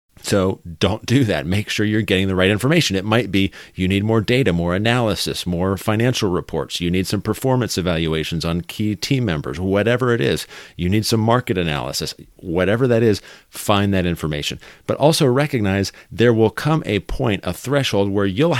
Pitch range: 90-110 Hz